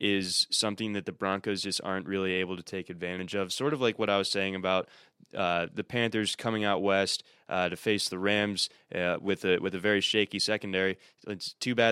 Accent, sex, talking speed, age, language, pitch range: American, male, 215 wpm, 20-39, English, 95-105 Hz